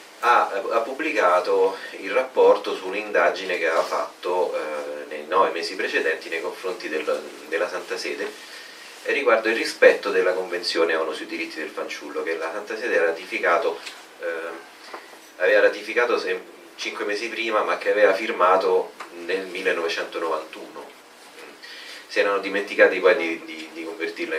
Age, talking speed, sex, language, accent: 30-49, 140 wpm, male, Italian, native